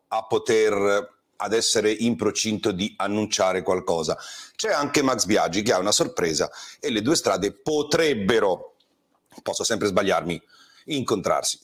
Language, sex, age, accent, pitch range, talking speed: Italian, male, 40-59, native, 110-180 Hz, 135 wpm